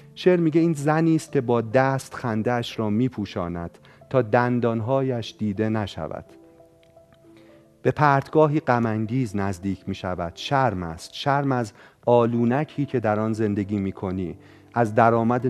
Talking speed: 125 wpm